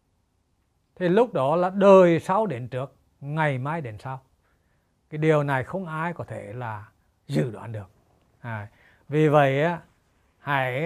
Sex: male